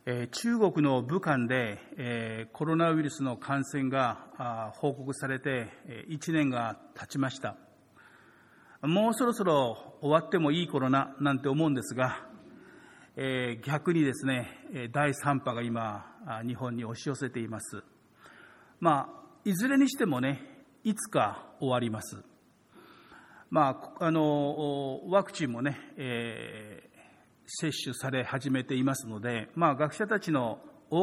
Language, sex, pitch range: Japanese, male, 120-155 Hz